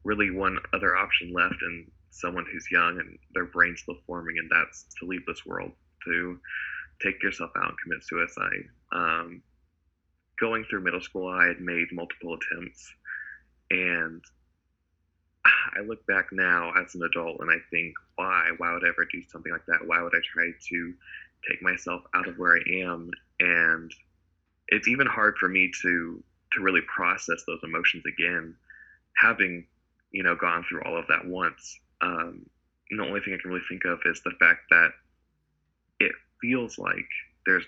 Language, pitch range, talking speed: English, 80-90 Hz, 175 wpm